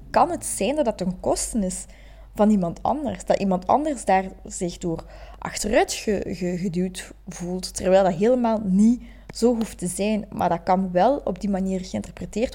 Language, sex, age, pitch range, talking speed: Dutch, female, 20-39, 190-245 Hz, 180 wpm